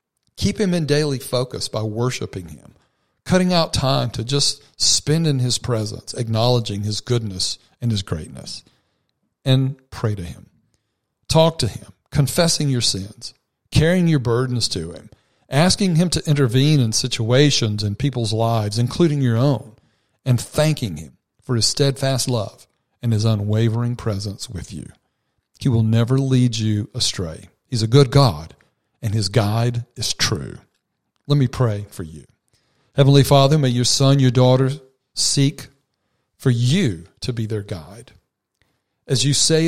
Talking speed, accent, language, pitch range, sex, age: 150 wpm, American, English, 110-140 Hz, male, 50-69